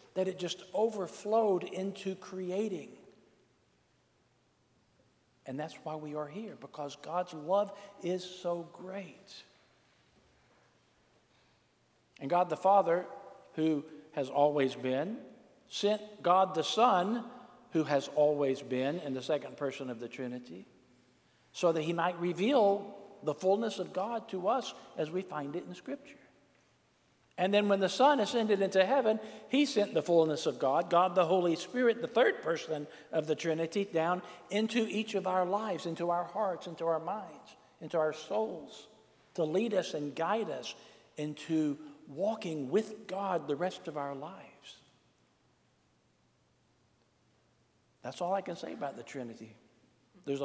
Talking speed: 145 wpm